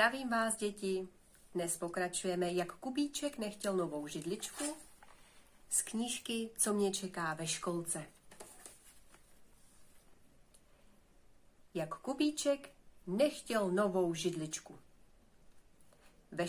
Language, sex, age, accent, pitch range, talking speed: Czech, female, 30-49, native, 170-250 Hz, 85 wpm